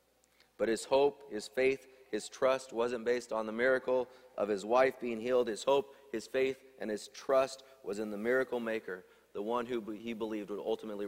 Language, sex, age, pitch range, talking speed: English, male, 30-49, 115-155 Hz, 195 wpm